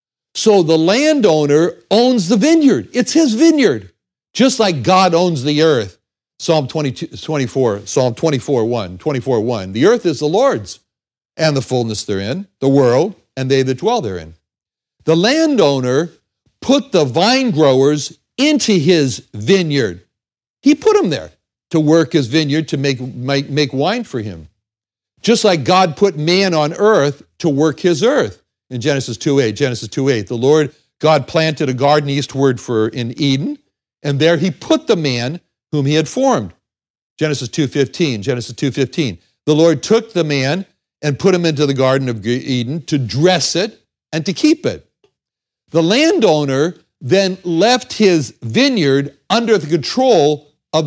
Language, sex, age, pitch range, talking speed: English, male, 60-79, 130-180 Hz, 160 wpm